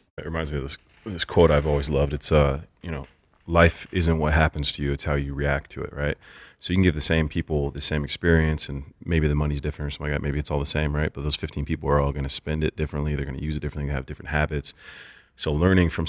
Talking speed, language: 285 wpm, English